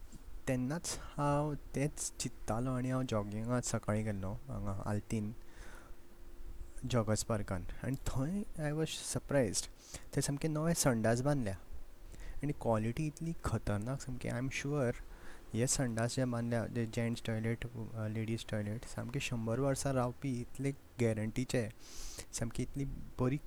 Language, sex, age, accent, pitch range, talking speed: Marathi, male, 20-39, native, 110-130 Hz, 115 wpm